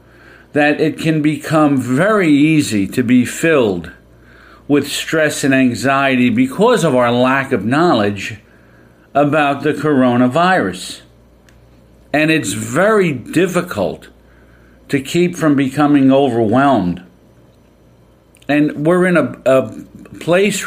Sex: male